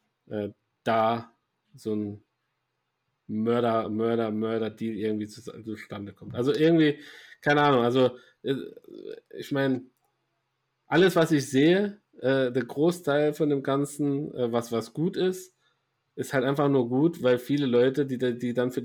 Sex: male